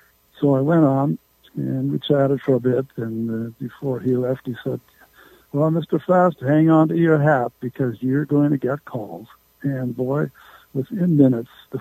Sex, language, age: male, English, 60-79